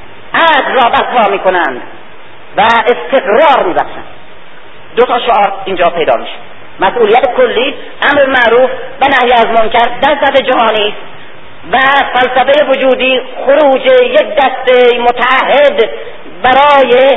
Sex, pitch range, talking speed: female, 225-275 Hz, 115 wpm